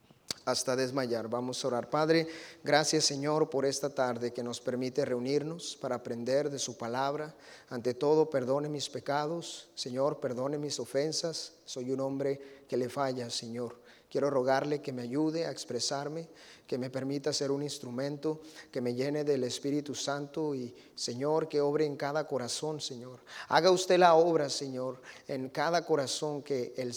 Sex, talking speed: male, 160 wpm